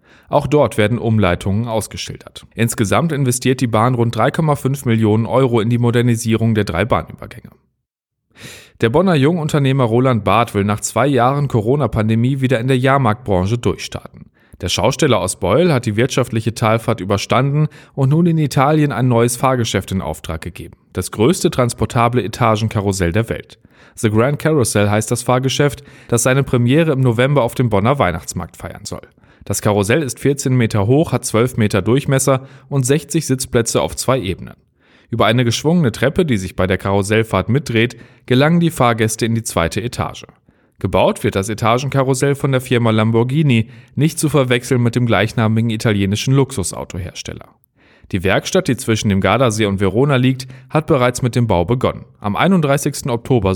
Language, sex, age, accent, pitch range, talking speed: German, male, 40-59, German, 110-135 Hz, 160 wpm